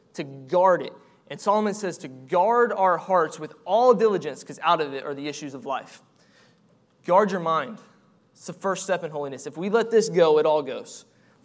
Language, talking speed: English, 210 wpm